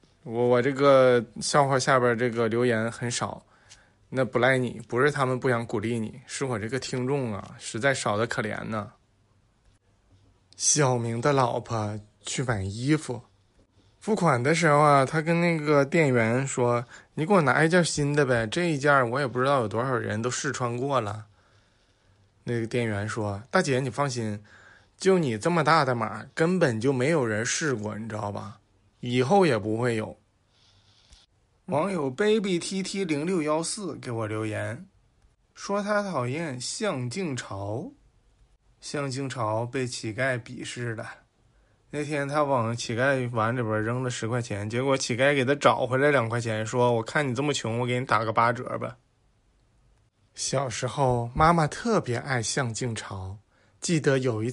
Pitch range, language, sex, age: 110-140 Hz, Chinese, male, 20-39